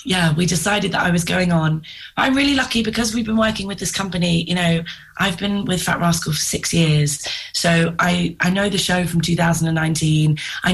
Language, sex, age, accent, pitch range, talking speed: English, female, 20-39, British, 165-195 Hz, 205 wpm